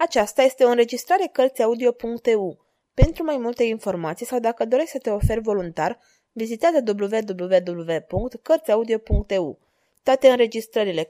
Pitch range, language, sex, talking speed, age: 210-275 Hz, Romanian, female, 110 wpm, 20-39